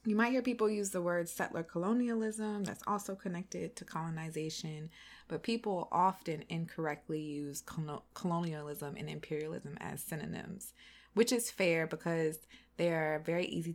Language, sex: English, female